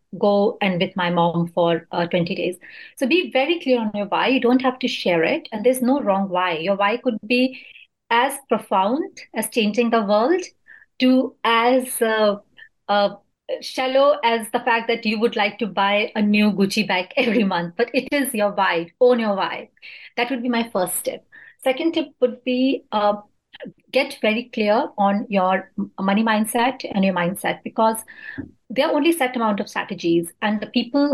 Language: English